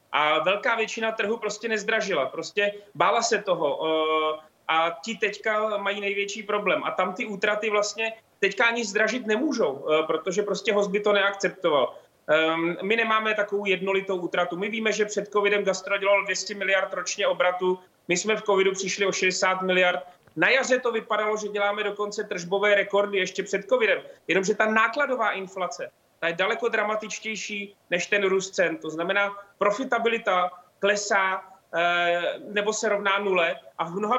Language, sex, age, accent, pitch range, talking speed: Czech, male, 30-49, native, 185-210 Hz, 160 wpm